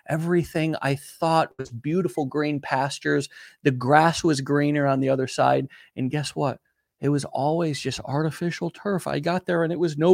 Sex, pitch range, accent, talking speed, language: male, 115-160 Hz, American, 185 wpm, English